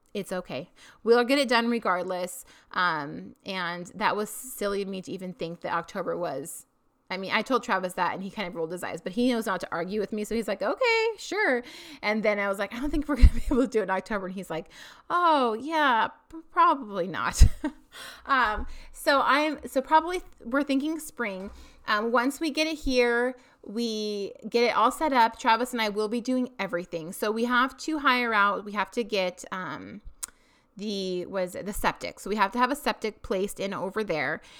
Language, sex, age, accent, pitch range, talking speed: English, female, 30-49, American, 185-255 Hz, 215 wpm